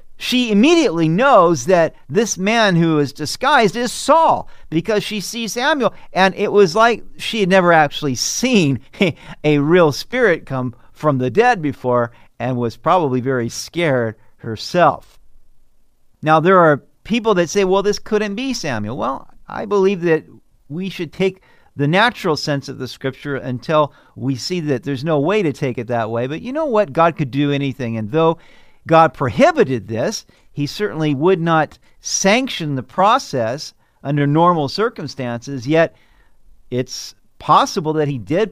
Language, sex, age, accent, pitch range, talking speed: English, male, 50-69, American, 135-185 Hz, 160 wpm